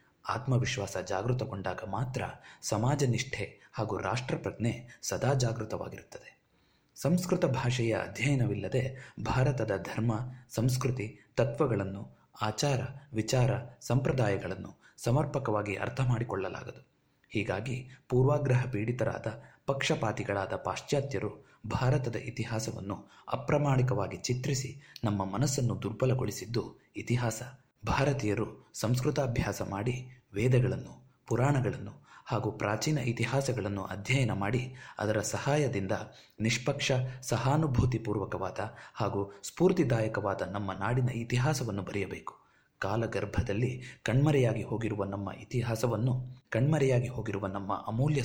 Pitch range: 105-130 Hz